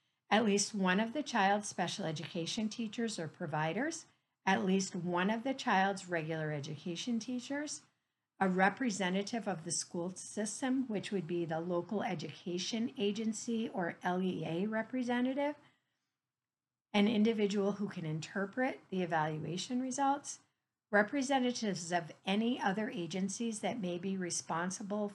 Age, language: 50-69, English